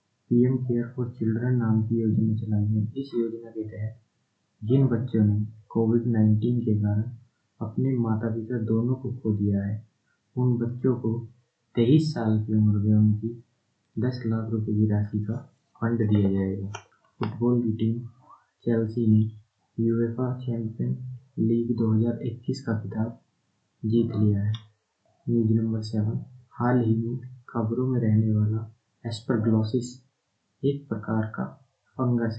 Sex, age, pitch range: male, 20-39, 110-120 Hz